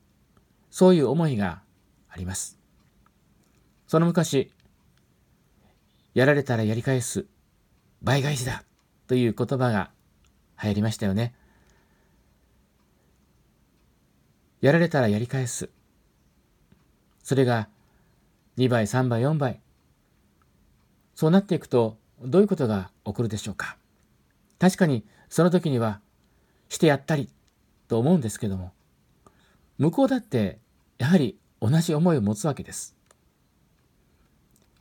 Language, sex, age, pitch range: Japanese, male, 50-69, 100-135 Hz